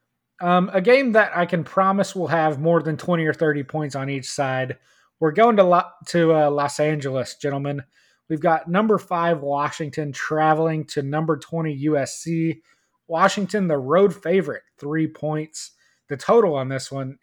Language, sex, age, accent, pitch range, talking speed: English, male, 20-39, American, 145-180 Hz, 165 wpm